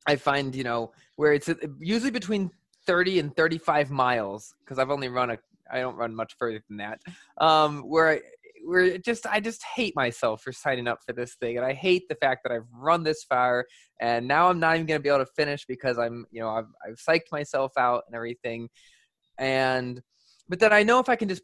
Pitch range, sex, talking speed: 135-190 Hz, male, 225 wpm